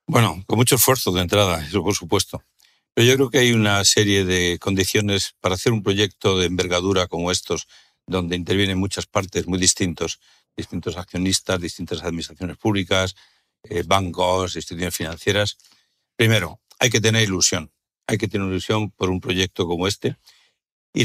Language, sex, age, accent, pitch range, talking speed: Spanish, male, 60-79, Spanish, 90-110 Hz, 160 wpm